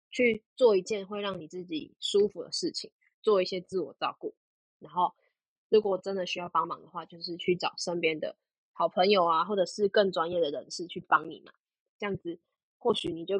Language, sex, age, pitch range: Chinese, female, 10-29, 180-225 Hz